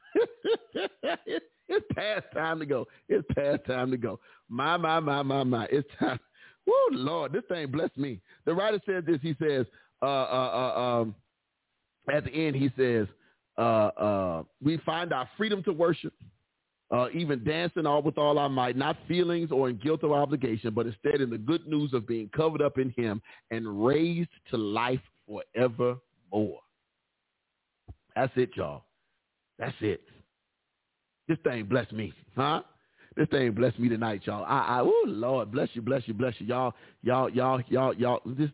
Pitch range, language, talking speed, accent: 110-145 Hz, English, 175 wpm, American